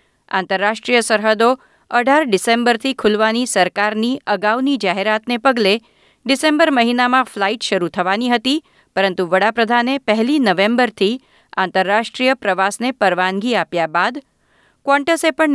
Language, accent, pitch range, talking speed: Gujarati, native, 190-245 Hz, 95 wpm